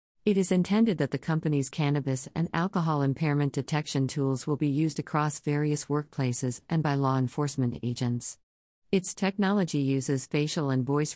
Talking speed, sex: 155 wpm, female